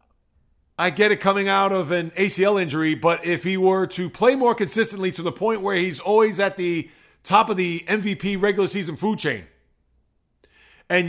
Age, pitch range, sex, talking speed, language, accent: 30-49, 170-210 Hz, male, 185 wpm, English, American